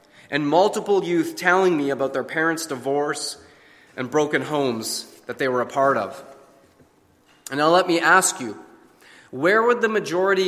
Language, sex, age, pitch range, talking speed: English, male, 30-49, 140-185 Hz, 160 wpm